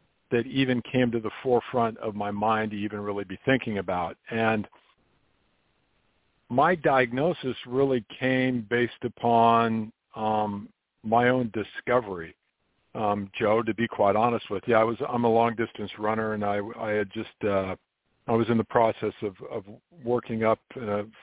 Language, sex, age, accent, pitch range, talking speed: English, male, 50-69, American, 105-125 Hz, 160 wpm